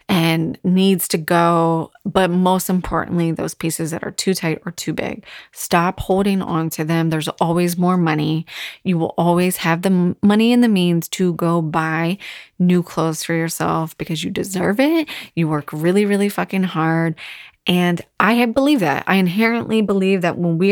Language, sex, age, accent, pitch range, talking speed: English, female, 20-39, American, 160-185 Hz, 175 wpm